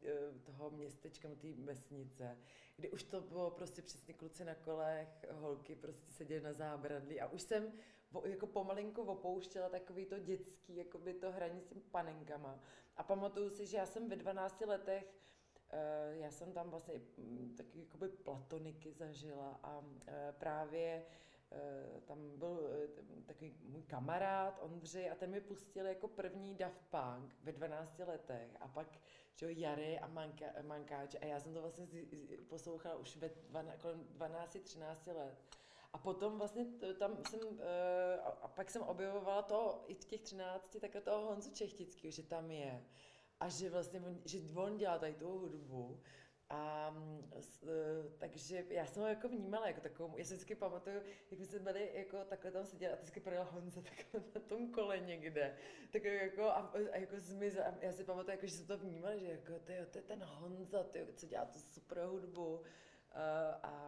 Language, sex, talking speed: Czech, female, 160 wpm